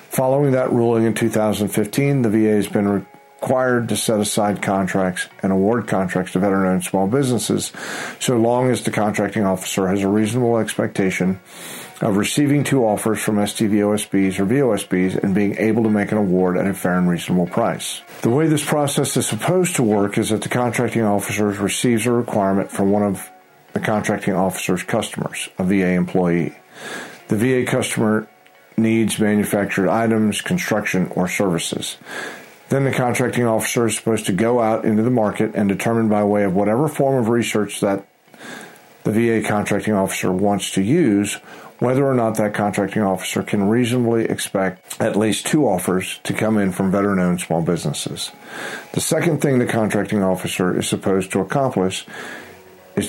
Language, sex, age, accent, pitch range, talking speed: English, male, 50-69, American, 95-115 Hz, 165 wpm